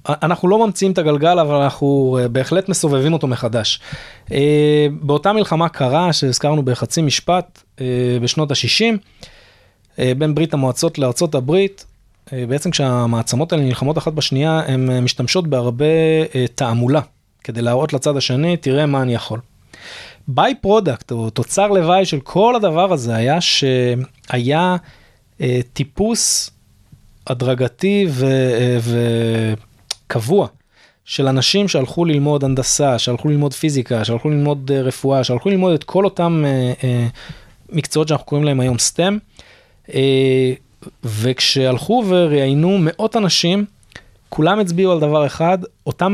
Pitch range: 125-170 Hz